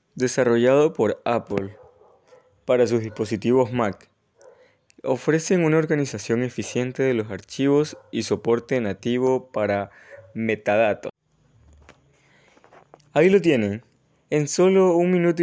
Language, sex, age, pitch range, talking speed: English, male, 20-39, 115-150 Hz, 100 wpm